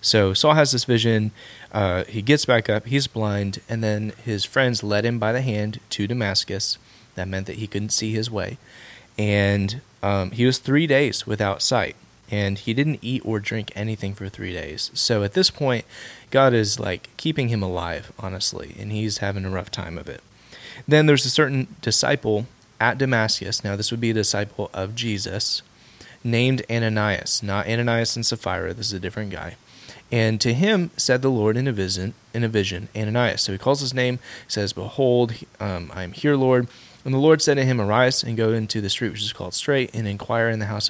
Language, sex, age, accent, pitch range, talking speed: English, male, 30-49, American, 100-125 Hz, 200 wpm